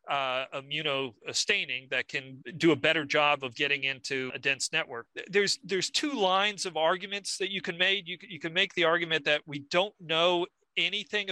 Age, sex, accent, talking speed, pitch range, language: 40-59, male, American, 195 wpm, 140-175 Hz, English